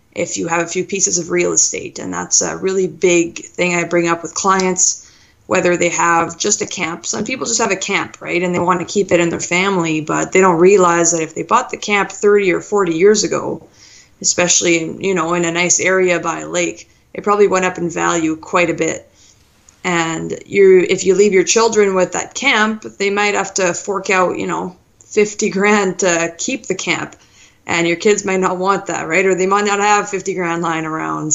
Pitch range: 165-195 Hz